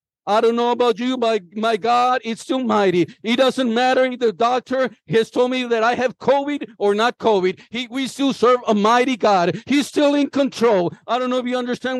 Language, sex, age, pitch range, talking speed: English, male, 50-69, 200-260 Hz, 220 wpm